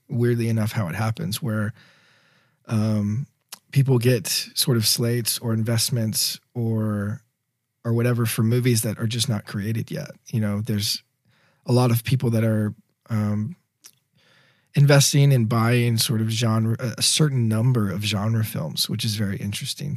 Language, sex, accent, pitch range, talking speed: English, male, American, 115-140 Hz, 155 wpm